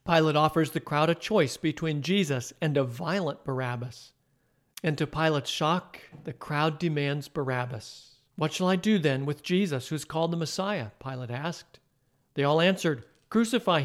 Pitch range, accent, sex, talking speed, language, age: 135-170 Hz, American, male, 165 wpm, English, 50-69